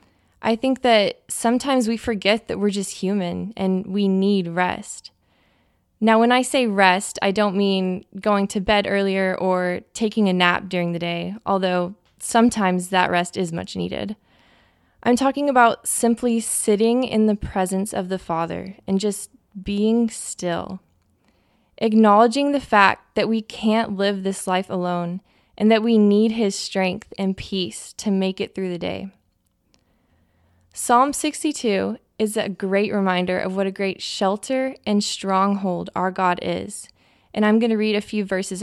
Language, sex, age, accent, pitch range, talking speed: English, female, 10-29, American, 185-220 Hz, 160 wpm